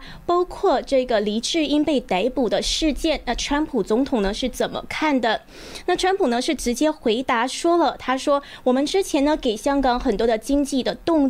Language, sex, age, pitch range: Chinese, female, 20-39, 240-305 Hz